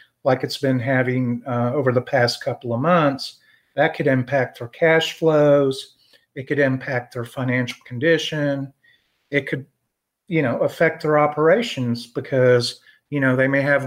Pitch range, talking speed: 125-145 Hz, 155 wpm